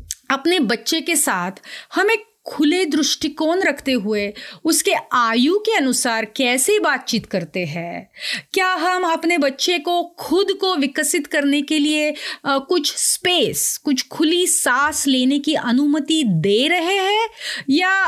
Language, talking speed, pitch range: Hindi, 135 wpm, 240-340 Hz